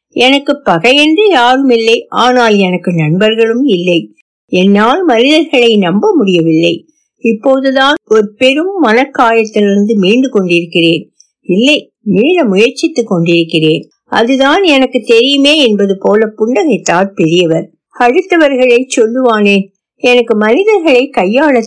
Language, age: Tamil, 60-79